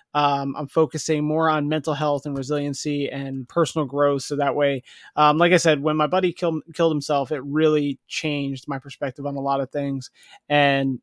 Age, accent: 30-49, American